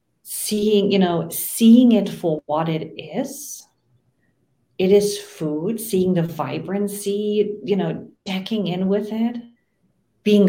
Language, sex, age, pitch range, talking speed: English, female, 40-59, 170-230 Hz, 125 wpm